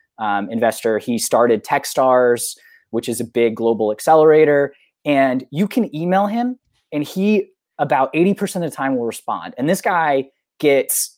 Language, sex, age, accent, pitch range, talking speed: English, male, 20-39, American, 115-155 Hz, 150 wpm